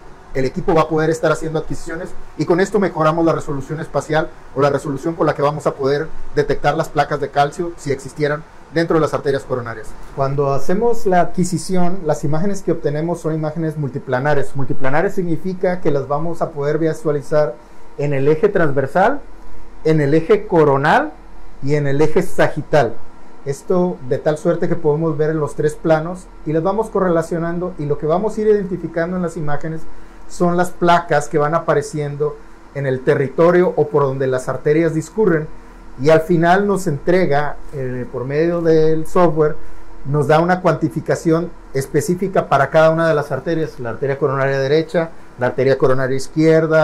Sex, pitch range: male, 145-170 Hz